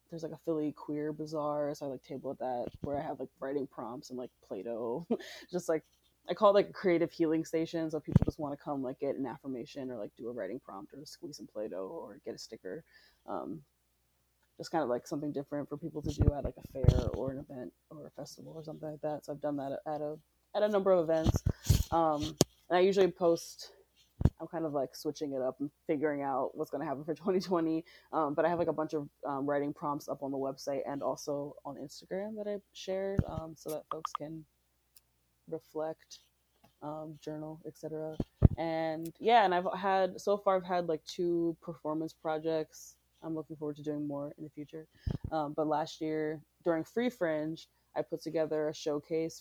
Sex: female